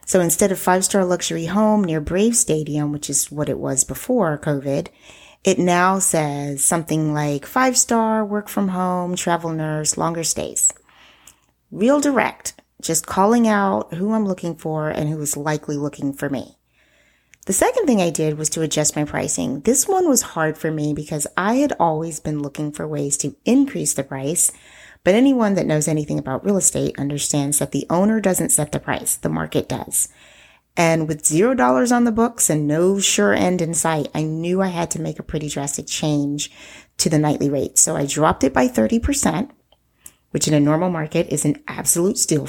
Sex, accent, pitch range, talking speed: female, American, 150-195 Hz, 190 wpm